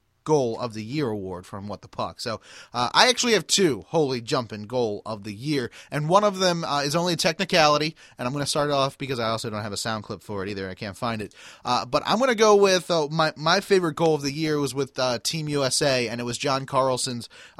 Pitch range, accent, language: 115-145 Hz, American, English